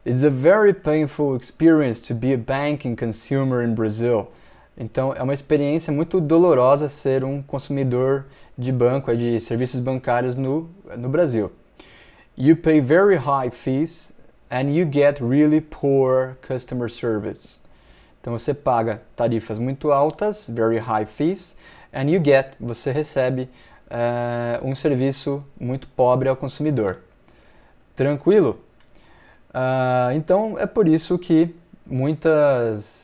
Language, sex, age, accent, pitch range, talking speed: Portuguese, male, 20-39, Brazilian, 125-150 Hz, 125 wpm